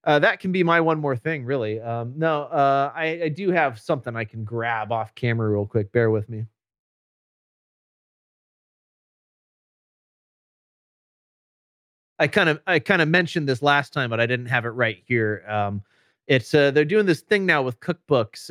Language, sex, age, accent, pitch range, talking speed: English, male, 30-49, American, 115-145 Hz, 175 wpm